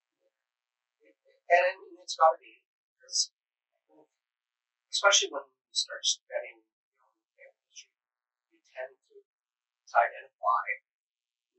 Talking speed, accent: 110 wpm, American